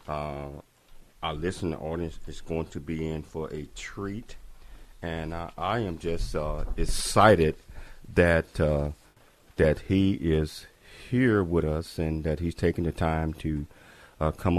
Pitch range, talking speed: 75-95 Hz, 150 wpm